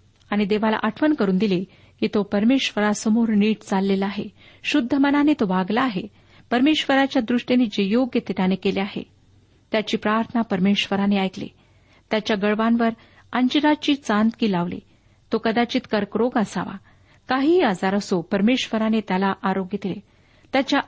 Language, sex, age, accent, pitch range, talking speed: Marathi, female, 50-69, native, 200-245 Hz, 125 wpm